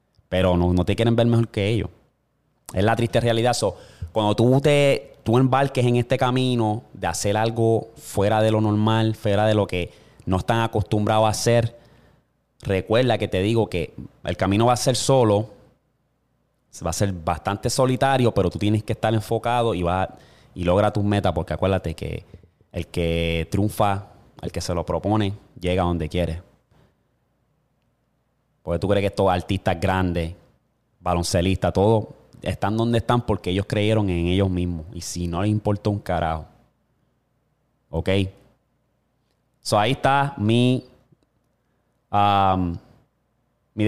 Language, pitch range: Spanish, 95-120 Hz